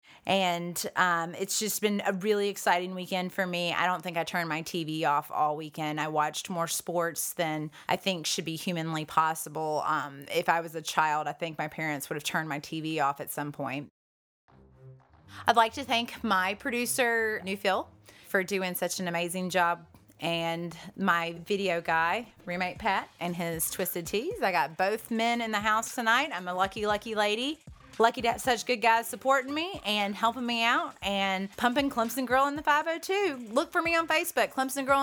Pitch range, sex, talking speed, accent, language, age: 170-245 Hz, female, 195 wpm, American, English, 30-49